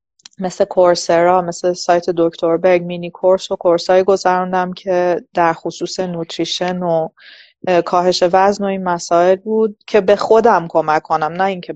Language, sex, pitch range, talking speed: Persian, female, 175-215 Hz, 150 wpm